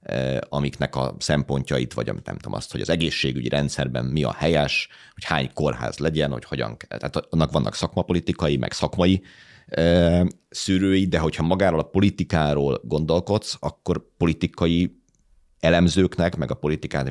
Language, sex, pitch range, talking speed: Hungarian, male, 70-90 Hz, 145 wpm